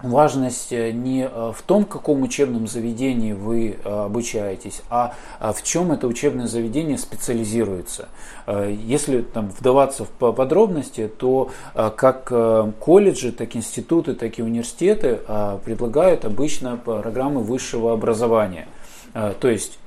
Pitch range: 110-130 Hz